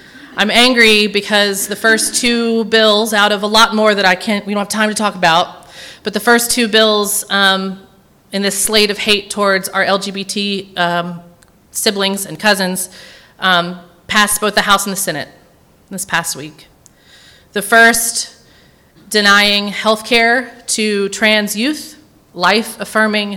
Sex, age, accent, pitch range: female, 30-49, American, 195-220 Hz